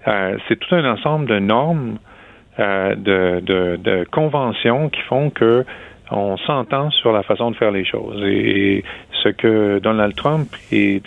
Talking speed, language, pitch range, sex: 165 wpm, French, 100-135 Hz, male